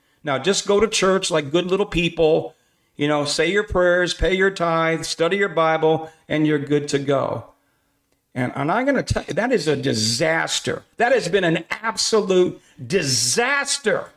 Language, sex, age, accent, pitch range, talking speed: English, male, 50-69, American, 130-170 Hz, 175 wpm